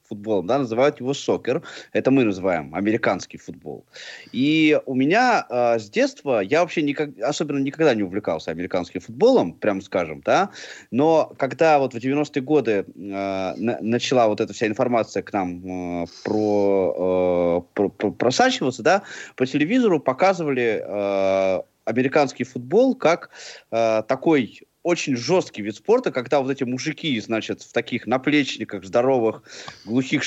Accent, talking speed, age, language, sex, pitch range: native, 145 wpm, 20-39, Russian, male, 110-150 Hz